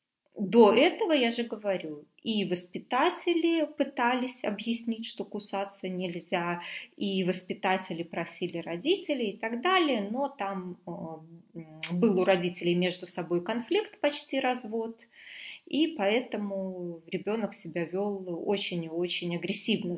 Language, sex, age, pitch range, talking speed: Russian, female, 20-39, 180-230 Hz, 115 wpm